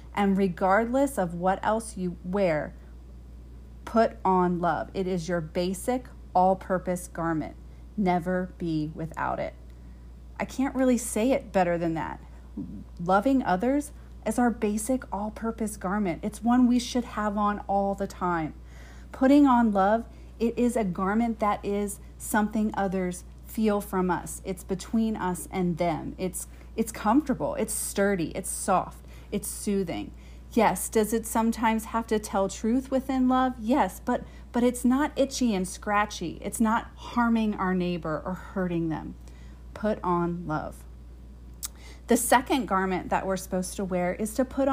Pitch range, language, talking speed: 175-230 Hz, English, 150 wpm